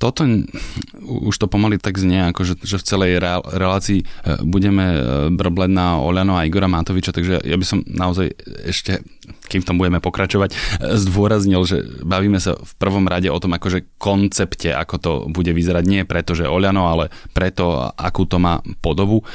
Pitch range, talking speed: 85-95 Hz, 170 wpm